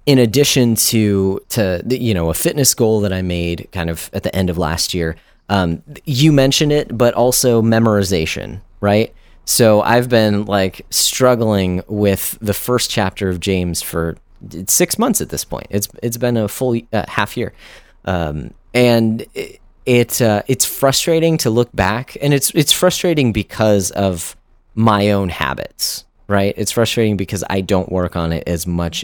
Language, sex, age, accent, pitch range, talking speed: English, male, 30-49, American, 85-120 Hz, 170 wpm